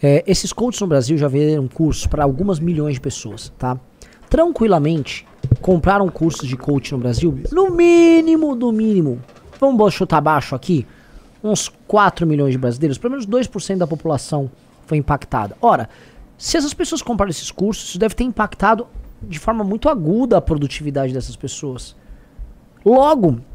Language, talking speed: Portuguese, 155 wpm